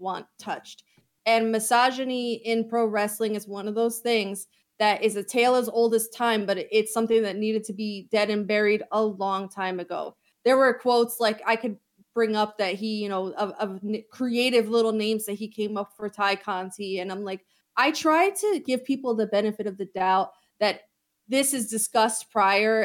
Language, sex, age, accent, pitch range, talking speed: English, female, 20-39, American, 200-230 Hz, 200 wpm